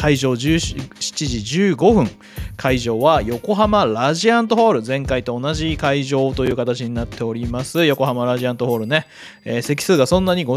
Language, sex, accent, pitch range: Japanese, male, native, 120-180 Hz